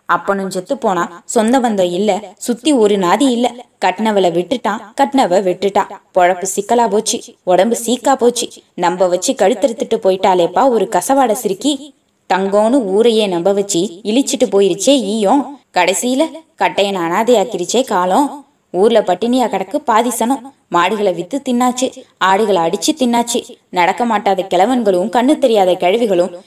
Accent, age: native, 20-39